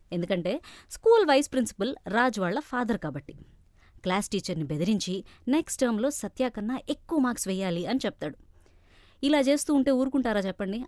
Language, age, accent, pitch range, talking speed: Telugu, 20-39, native, 185-275 Hz, 130 wpm